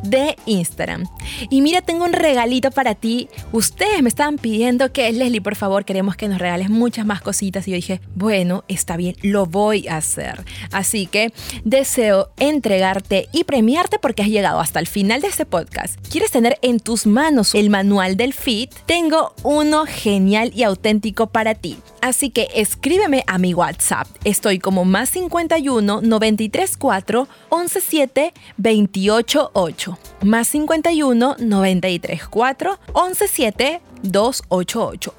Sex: female